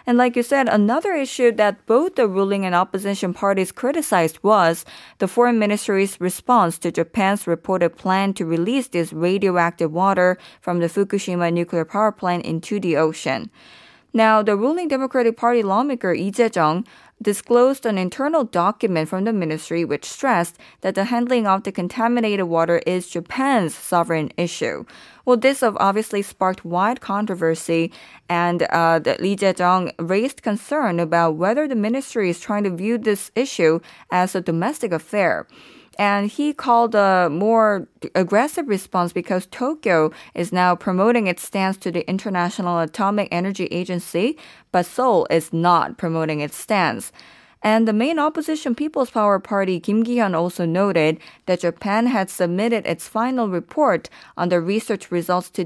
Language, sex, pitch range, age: Korean, female, 175-230 Hz, 20-39